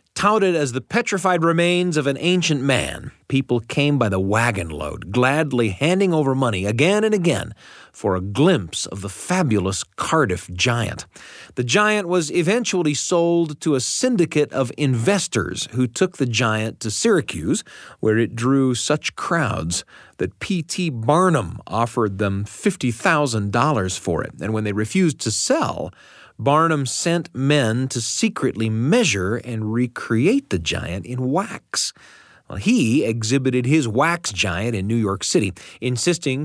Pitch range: 110-155 Hz